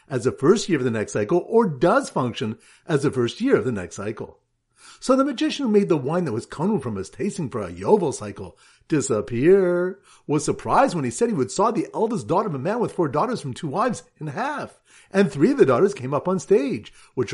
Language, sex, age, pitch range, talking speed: English, male, 50-69, 155-215 Hz, 240 wpm